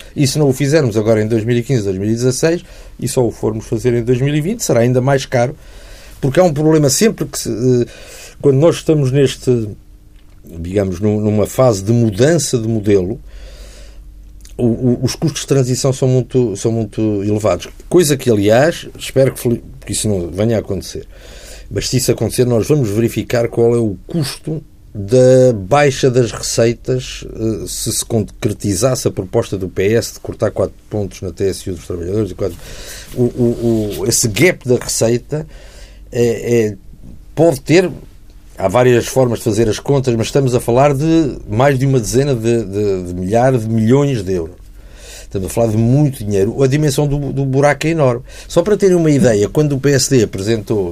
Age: 50-69